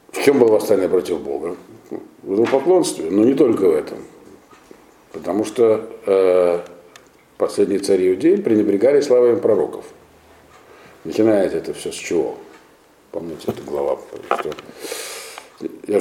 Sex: male